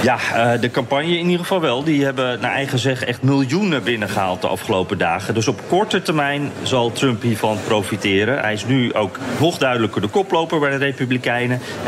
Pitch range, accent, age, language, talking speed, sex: 120-175 Hz, Dutch, 40-59, Dutch, 185 wpm, male